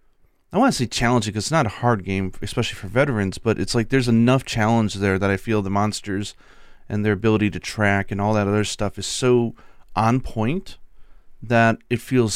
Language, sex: English, male